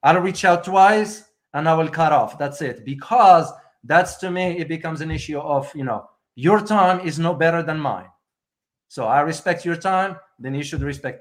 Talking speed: 205 wpm